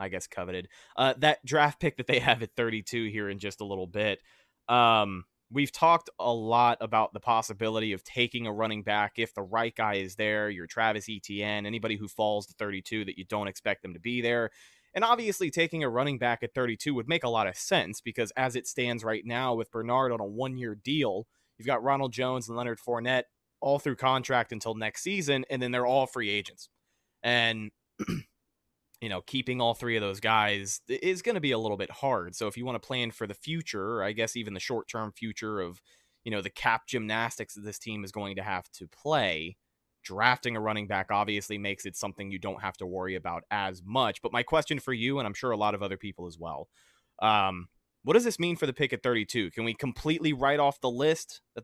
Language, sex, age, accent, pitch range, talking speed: English, male, 20-39, American, 105-130 Hz, 225 wpm